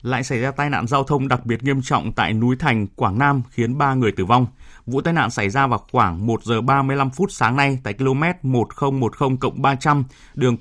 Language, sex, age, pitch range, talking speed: Vietnamese, male, 20-39, 115-140 Hz, 250 wpm